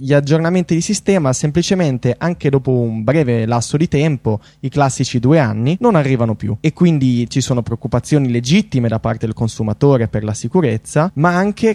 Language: Italian